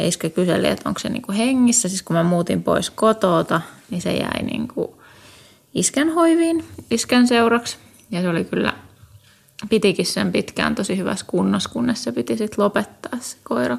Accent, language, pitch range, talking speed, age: native, Finnish, 175-230 Hz, 165 wpm, 20-39